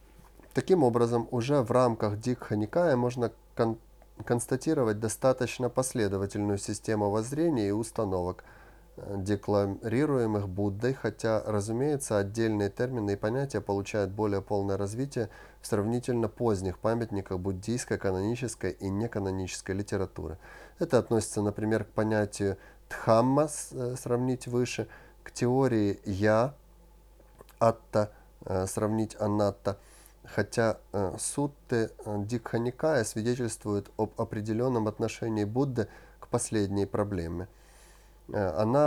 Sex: male